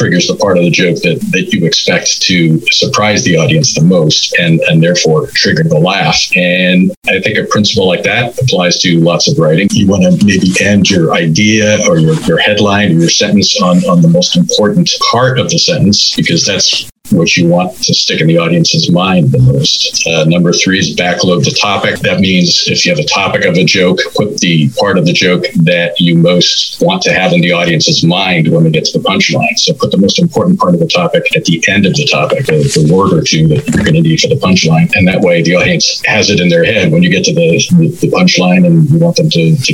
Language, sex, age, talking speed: English, male, 50-69, 240 wpm